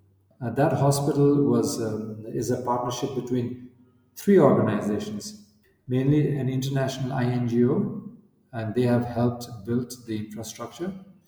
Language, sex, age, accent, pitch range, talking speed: English, male, 50-69, Indian, 115-135 Hz, 115 wpm